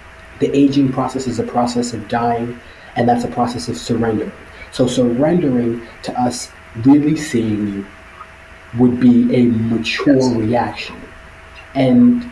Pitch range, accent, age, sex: 120-135 Hz, American, 30-49, male